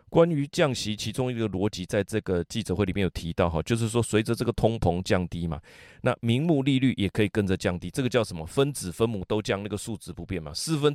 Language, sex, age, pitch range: Chinese, male, 30-49, 95-120 Hz